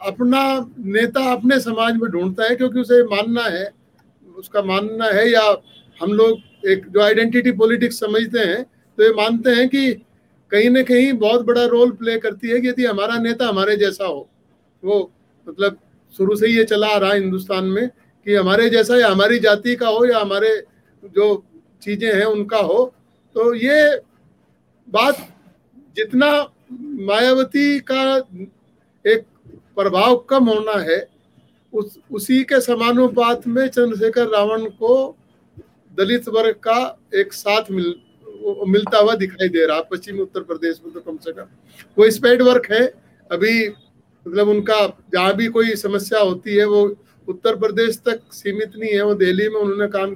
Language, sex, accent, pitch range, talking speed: Hindi, male, native, 200-245 Hz, 155 wpm